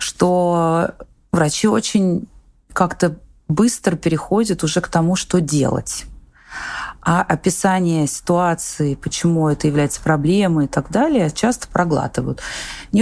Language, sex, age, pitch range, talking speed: Russian, female, 30-49, 140-180 Hz, 110 wpm